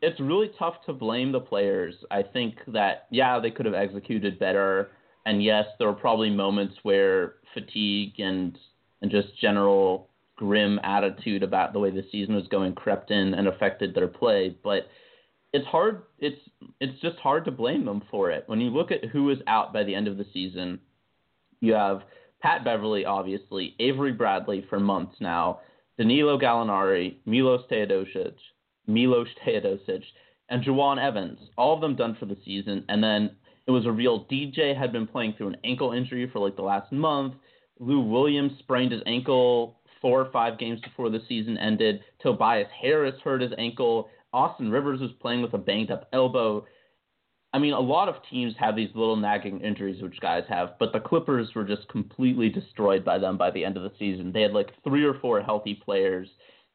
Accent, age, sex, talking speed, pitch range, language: American, 30-49, male, 185 wpm, 100-135 Hz, English